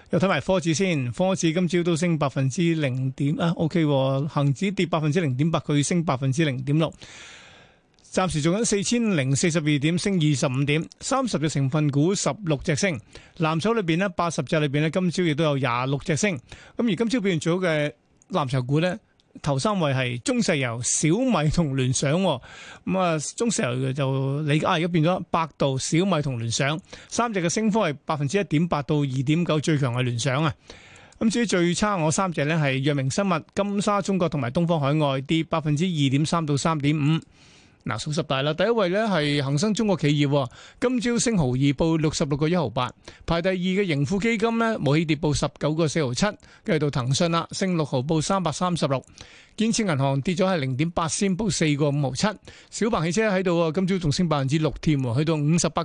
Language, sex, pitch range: Chinese, male, 145-185 Hz